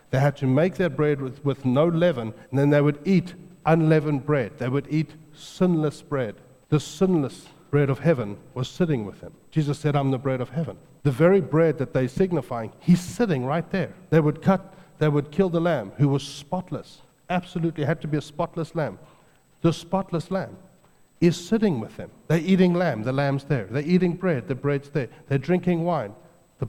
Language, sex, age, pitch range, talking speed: English, male, 60-79, 125-165 Hz, 200 wpm